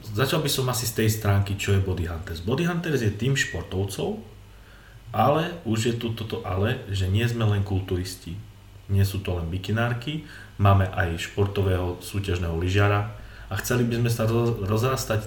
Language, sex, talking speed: Czech, male, 165 wpm